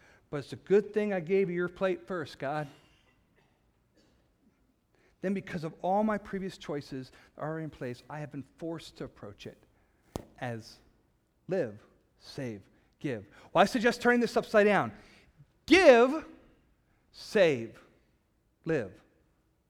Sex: male